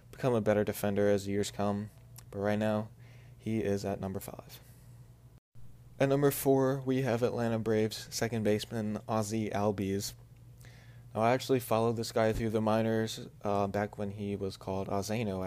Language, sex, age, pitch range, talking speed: English, male, 20-39, 105-125 Hz, 170 wpm